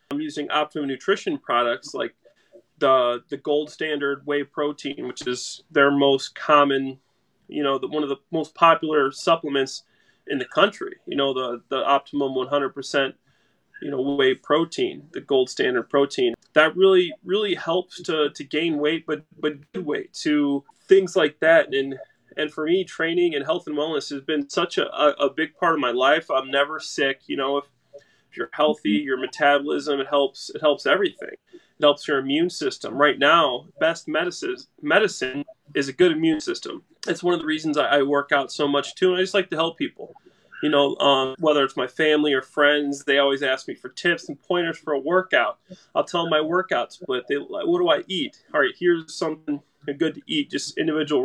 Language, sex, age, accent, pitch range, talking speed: English, male, 30-49, American, 140-185 Hz, 195 wpm